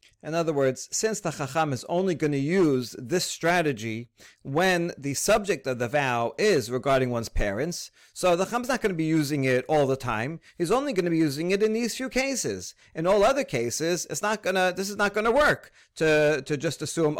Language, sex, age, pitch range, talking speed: English, male, 40-59, 135-175 Hz, 215 wpm